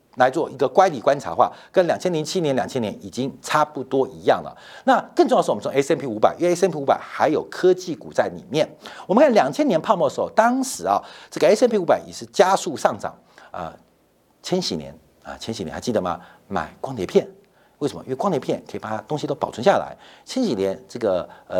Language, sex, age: Chinese, male, 50-69